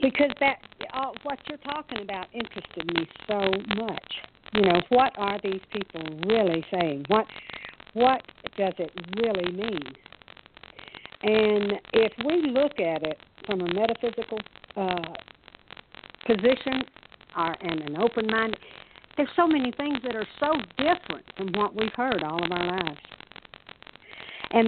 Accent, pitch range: American, 180-235 Hz